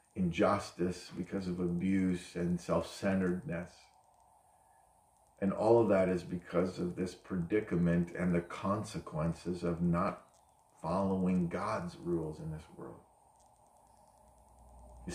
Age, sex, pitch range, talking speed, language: 40-59, male, 85-105 Hz, 105 wpm, English